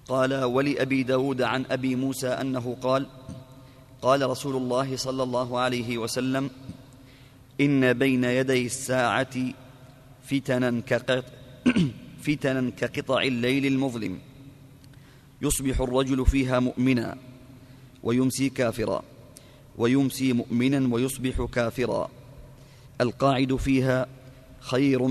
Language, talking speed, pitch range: Arabic, 85 wpm, 125-135 Hz